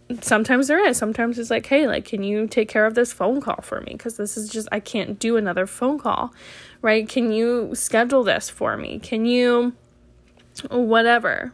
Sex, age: female, 10-29